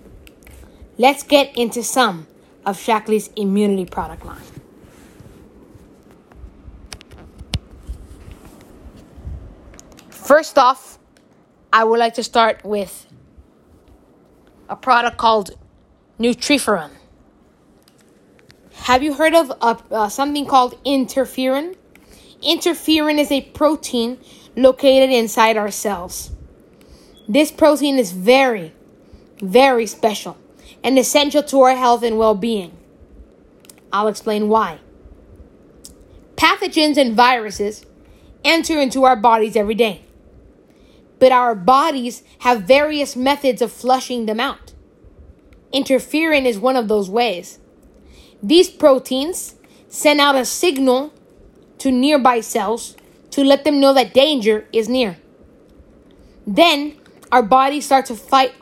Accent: American